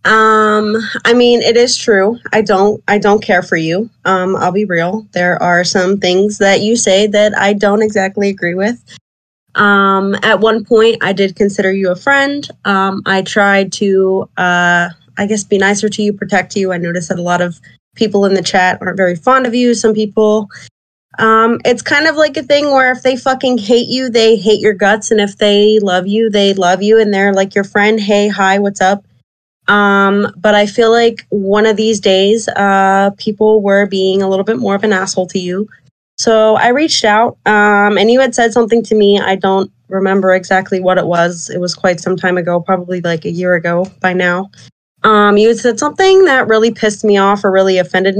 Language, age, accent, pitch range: English, 20-39, American, 190-220 Hz